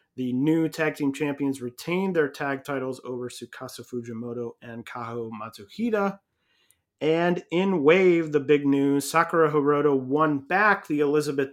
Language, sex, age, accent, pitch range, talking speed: English, male, 30-49, American, 125-155 Hz, 140 wpm